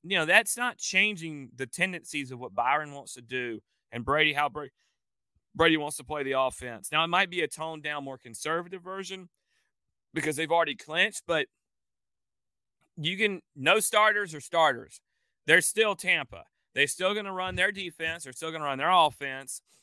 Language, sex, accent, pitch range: English, male, American, 130-175 Hz